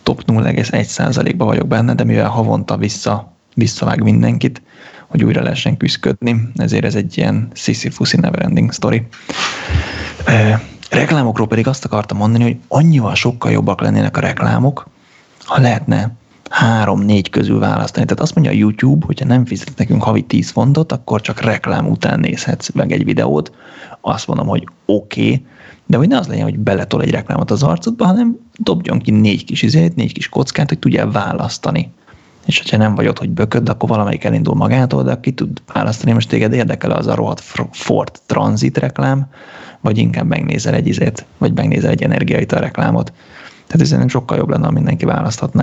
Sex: male